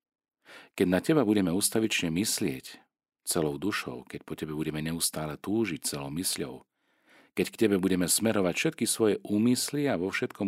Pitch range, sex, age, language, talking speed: 75-105 Hz, male, 40-59, Slovak, 155 wpm